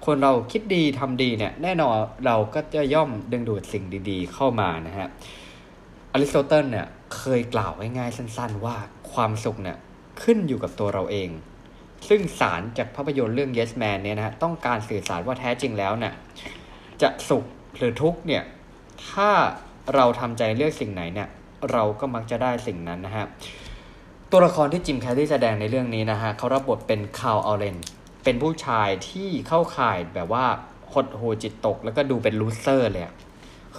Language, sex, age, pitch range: Thai, male, 20-39, 105-140 Hz